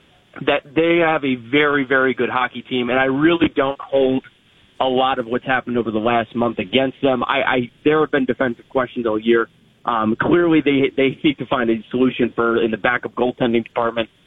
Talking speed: 205 wpm